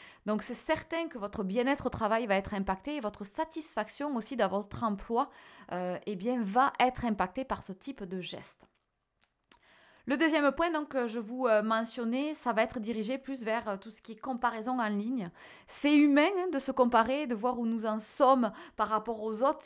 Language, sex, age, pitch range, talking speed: French, female, 20-39, 215-280 Hz, 190 wpm